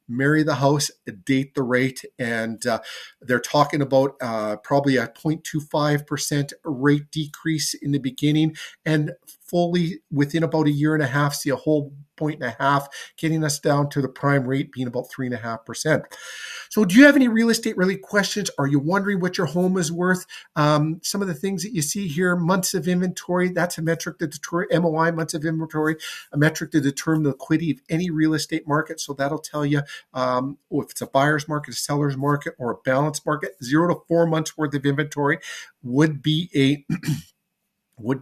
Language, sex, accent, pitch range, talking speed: English, male, American, 135-165 Hz, 200 wpm